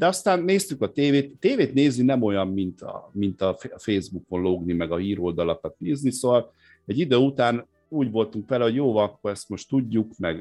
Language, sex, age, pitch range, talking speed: Hungarian, male, 50-69, 95-125 Hz, 195 wpm